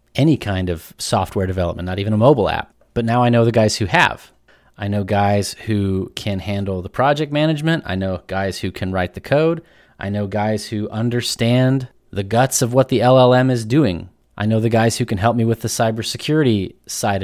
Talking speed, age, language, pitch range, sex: 210 wpm, 30-49, English, 100-125 Hz, male